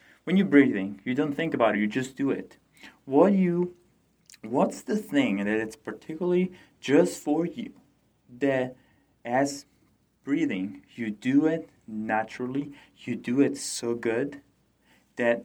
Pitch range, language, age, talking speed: 110-160 Hz, English, 30-49, 140 wpm